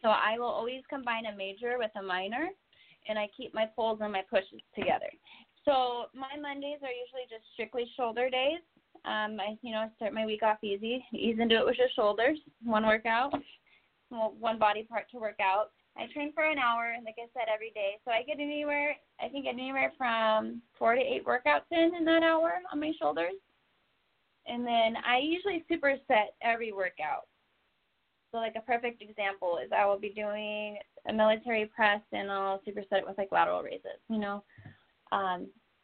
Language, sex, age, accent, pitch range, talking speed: English, female, 20-39, American, 210-265 Hz, 190 wpm